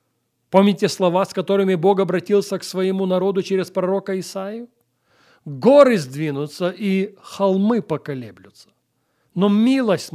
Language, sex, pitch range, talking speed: Russian, male, 155-205 Hz, 110 wpm